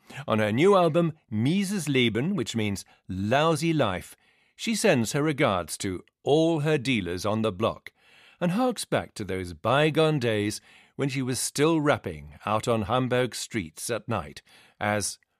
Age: 50-69